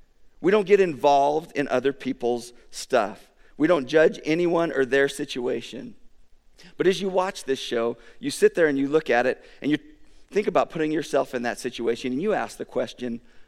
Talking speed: 190 wpm